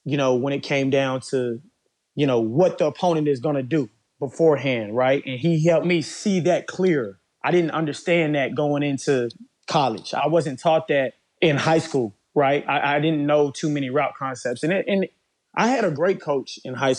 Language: English